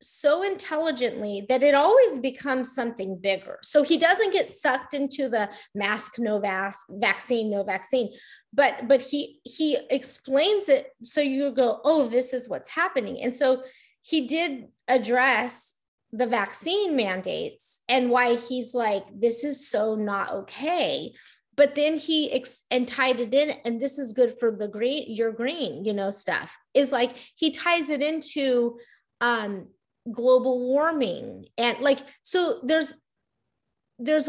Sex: female